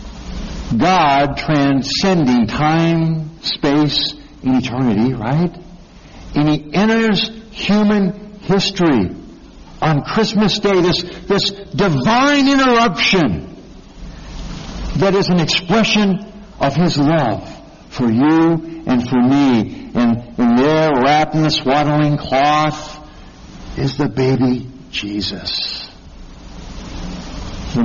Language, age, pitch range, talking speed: English, 60-79, 125-170 Hz, 95 wpm